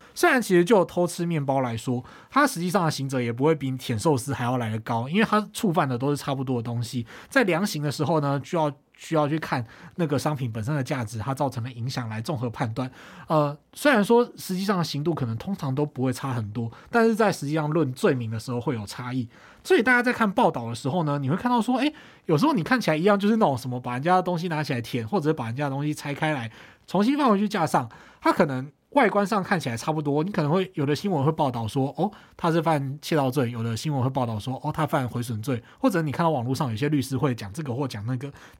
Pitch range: 130-175 Hz